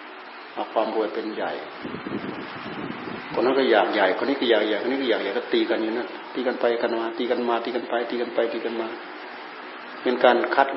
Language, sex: Thai, male